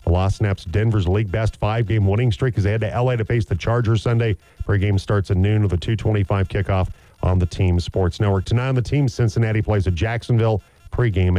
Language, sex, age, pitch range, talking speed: English, male, 40-59, 100-125 Hz, 210 wpm